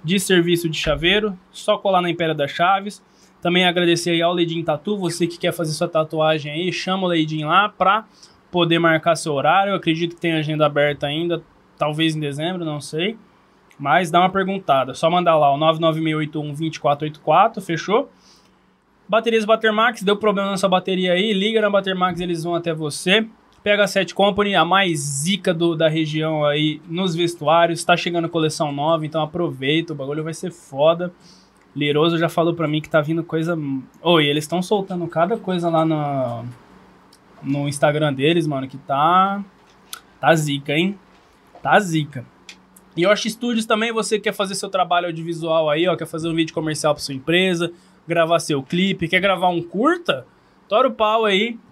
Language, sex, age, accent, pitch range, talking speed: Portuguese, male, 20-39, Brazilian, 155-190 Hz, 180 wpm